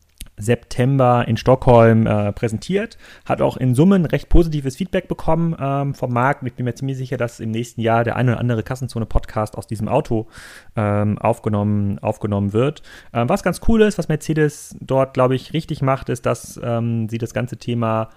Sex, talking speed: male, 185 wpm